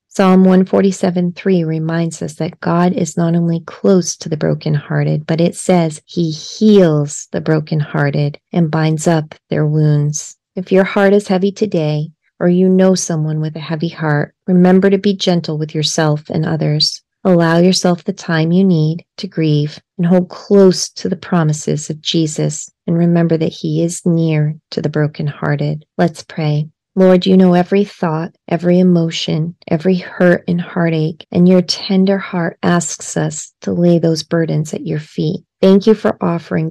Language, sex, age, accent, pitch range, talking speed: English, female, 30-49, American, 155-180 Hz, 165 wpm